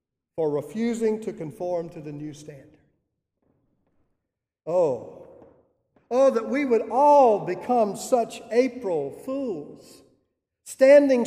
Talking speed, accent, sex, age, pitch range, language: 100 wpm, American, male, 50-69, 175-250 Hz, English